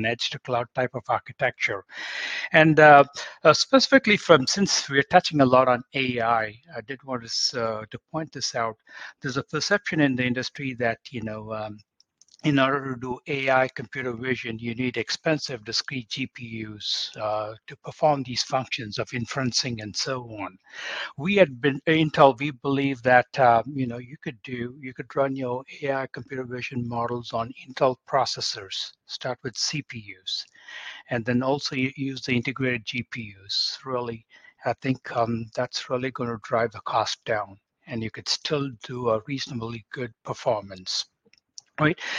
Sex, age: male, 60-79